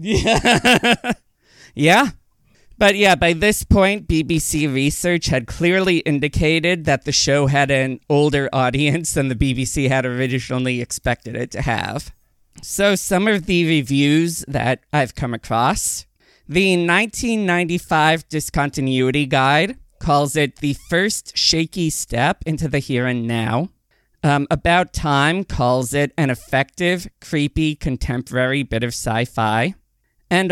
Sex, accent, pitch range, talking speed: male, American, 130-165 Hz, 130 wpm